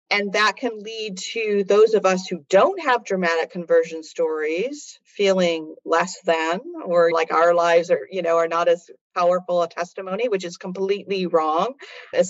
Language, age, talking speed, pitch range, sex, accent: English, 40-59, 170 wpm, 175-255 Hz, female, American